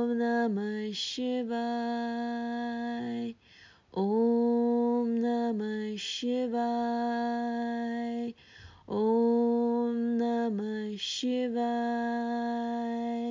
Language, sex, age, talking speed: Hindi, female, 20-39, 45 wpm